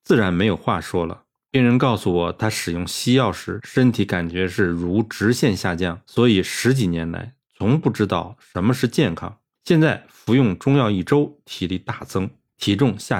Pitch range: 95-130 Hz